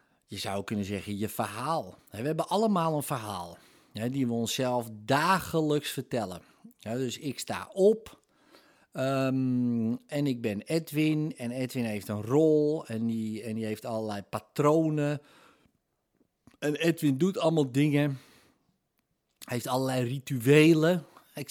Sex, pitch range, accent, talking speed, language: male, 120-165 Hz, Dutch, 135 wpm, Dutch